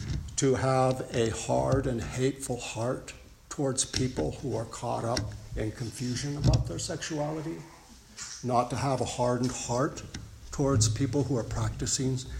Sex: male